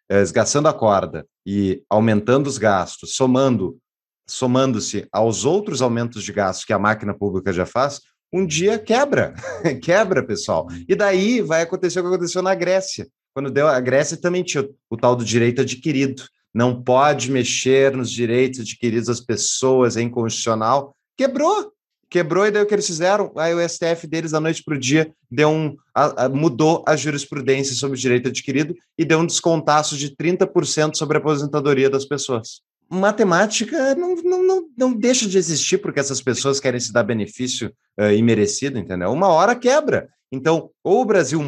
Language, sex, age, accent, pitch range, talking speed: Portuguese, male, 30-49, Brazilian, 125-175 Hz, 160 wpm